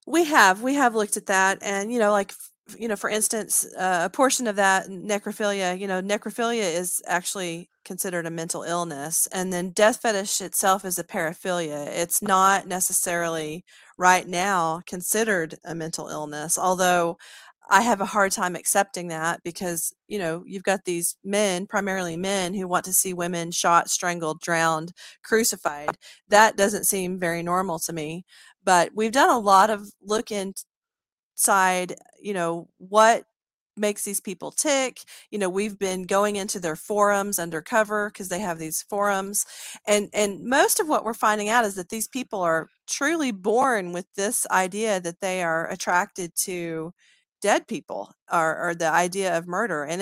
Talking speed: 170 wpm